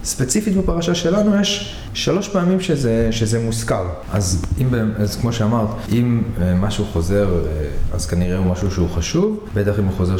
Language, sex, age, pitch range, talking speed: Hebrew, male, 20-39, 95-125 Hz, 160 wpm